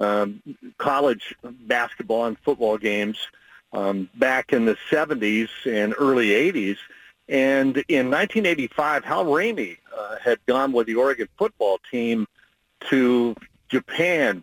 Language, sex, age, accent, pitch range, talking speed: English, male, 50-69, American, 110-140 Hz, 120 wpm